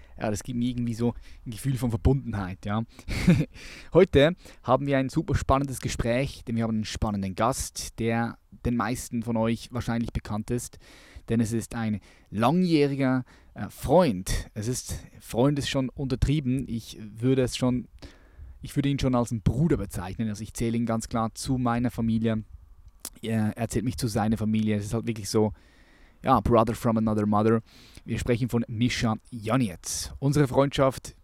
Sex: male